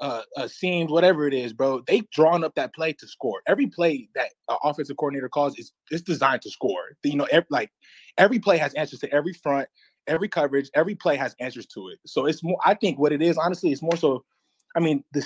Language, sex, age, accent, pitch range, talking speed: English, male, 20-39, American, 135-170 Hz, 230 wpm